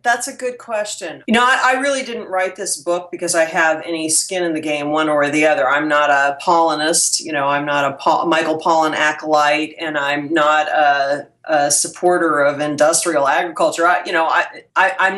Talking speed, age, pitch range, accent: 210 wpm, 40-59, 155-190 Hz, American